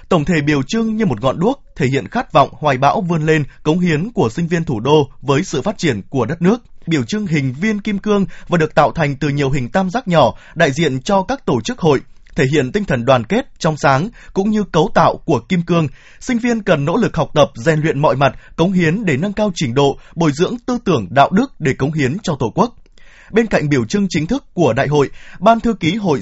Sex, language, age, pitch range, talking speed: male, Vietnamese, 20-39, 150-210 Hz, 255 wpm